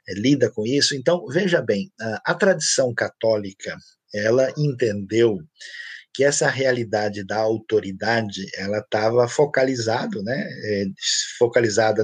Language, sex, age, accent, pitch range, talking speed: Portuguese, male, 50-69, Brazilian, 110-150 Hz, 105 wpm